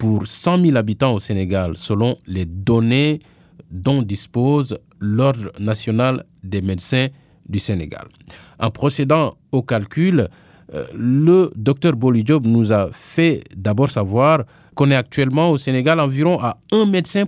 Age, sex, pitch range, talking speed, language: 50-69, male, 105-165 Hz, 130 wpm, English